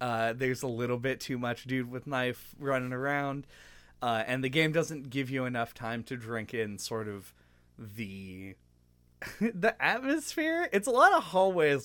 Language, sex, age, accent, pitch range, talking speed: English, male, 20-39, American, 105-150 Hz, 170 wpm